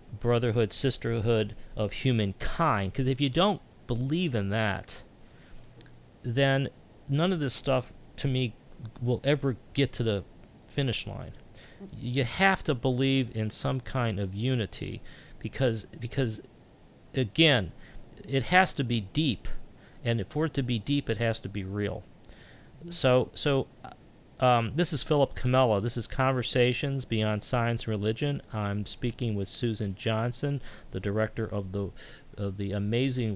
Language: English